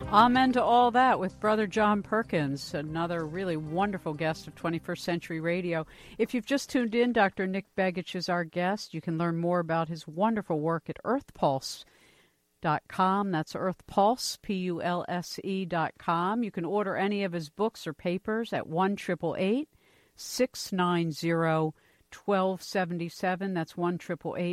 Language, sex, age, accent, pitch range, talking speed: English, female, 50-69, American, 165-205 Hz, 140 wpm